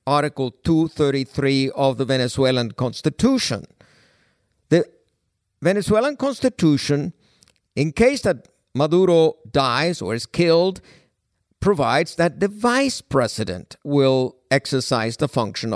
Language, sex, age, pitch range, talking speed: English, male, 50-69, 130-180 Hz, 100 wpm